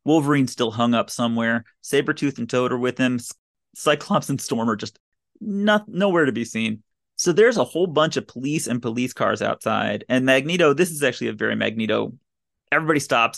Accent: American